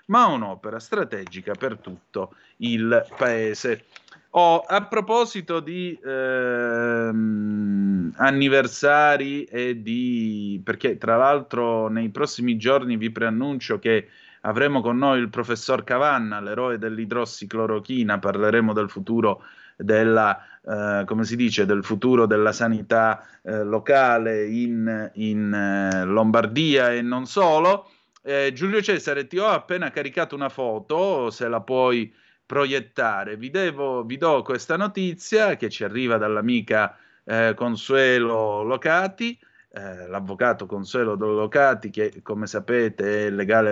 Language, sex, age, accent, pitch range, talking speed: Italian, male, 30-49, native, 110-140 Hz, 120 wpm